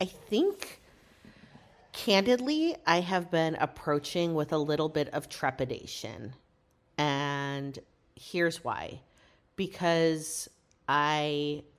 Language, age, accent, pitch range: English, 40-59, American, 140-180 Hz